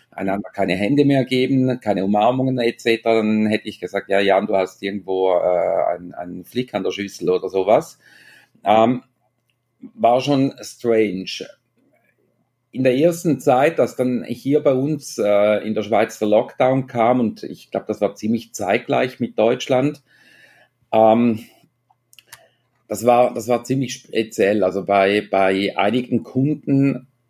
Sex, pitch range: male, 100-130 Hz